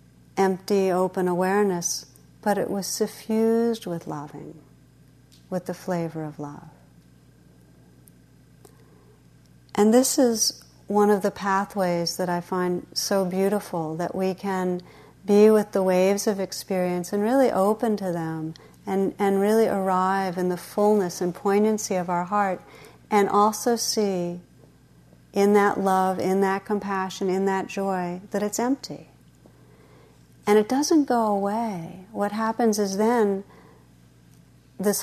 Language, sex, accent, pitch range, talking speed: English, female, American, 175-205 Hz, 130 wpm